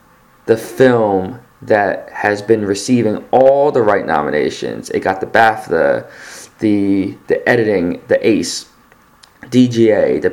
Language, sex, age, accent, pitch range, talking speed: English, male, 20-39, American, 100-120 Hz, 120 wpm